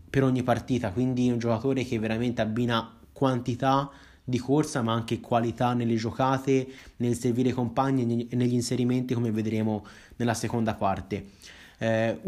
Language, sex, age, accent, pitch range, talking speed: Italian, male, 20-39, native, 115-140 Hz, 145 wpm